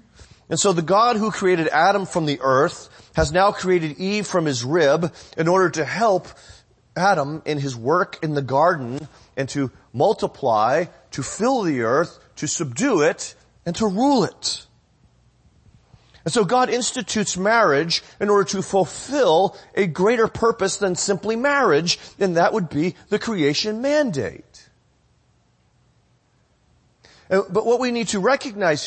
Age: 30-49